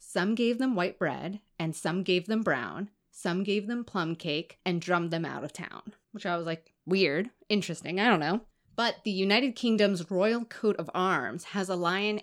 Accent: American